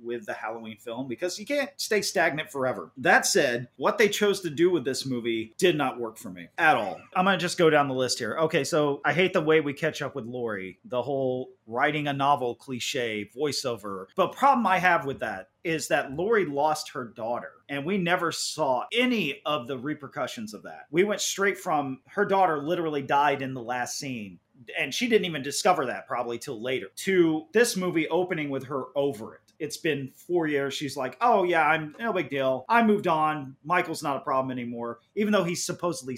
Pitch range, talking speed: 135-200 Hz, 215 wpm